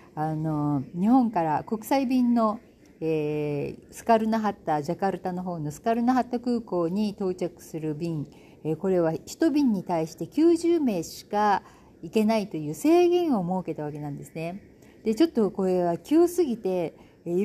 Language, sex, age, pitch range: Japanese, female, 50-69, 165-225 Hz